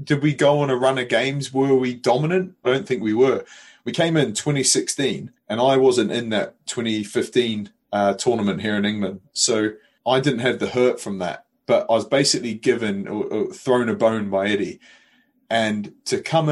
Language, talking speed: English, 195 wpm